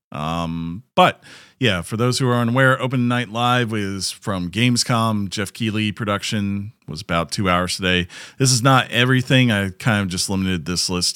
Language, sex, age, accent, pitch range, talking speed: English, male, 40-59, American, 85-115 Hz, 175 wpm